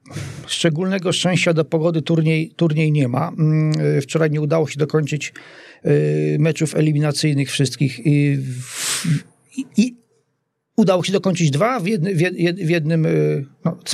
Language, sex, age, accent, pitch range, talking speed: Polish, male, 40-59, native, 150-180 Hz, 120 wpm